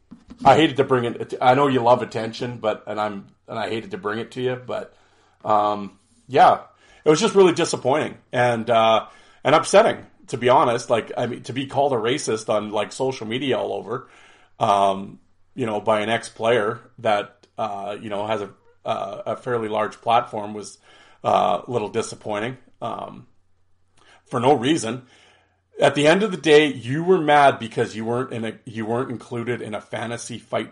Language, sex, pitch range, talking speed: English, male, 105-135 Hz, 190 wpm